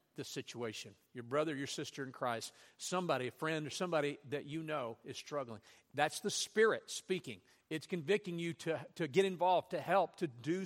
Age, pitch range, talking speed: 50-69, 145-225 Hz, 185 wpm